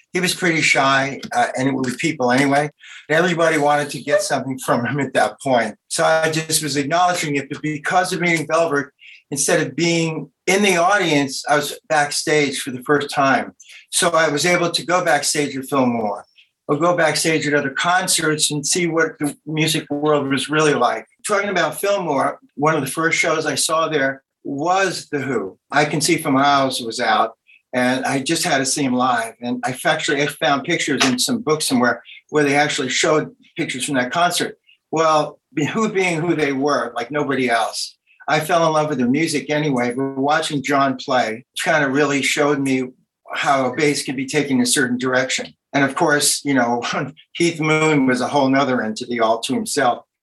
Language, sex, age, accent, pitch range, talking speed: English, male, 60-79, American, 135-165 Hz, 195 wpm